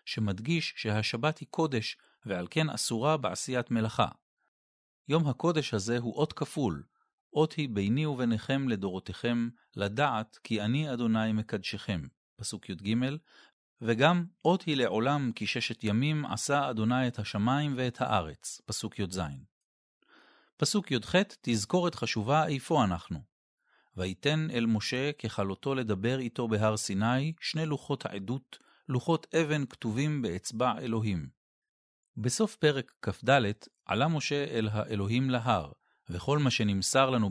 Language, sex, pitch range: Hebrew, male, 105-145 Hz